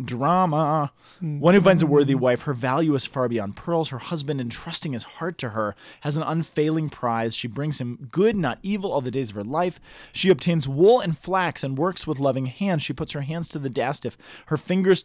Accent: American